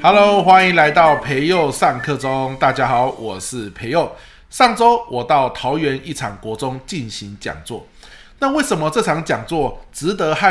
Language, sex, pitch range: Chinese, male, 110-175 Hz